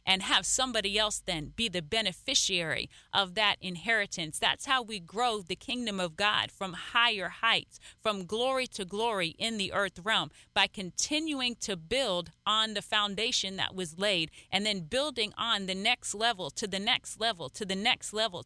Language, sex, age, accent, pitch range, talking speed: English, female, 30-49, American, 195-235 Hz, 180 wpm